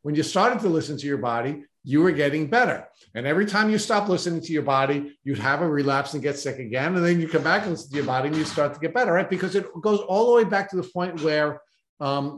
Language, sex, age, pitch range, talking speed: English, male, 50-69, 140-180 Hz, 280 wpm